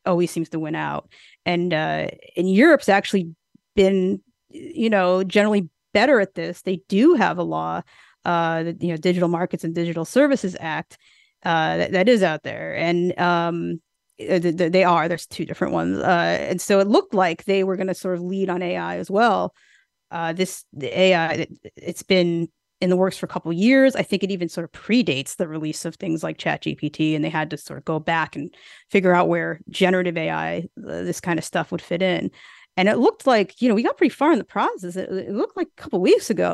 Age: 30-49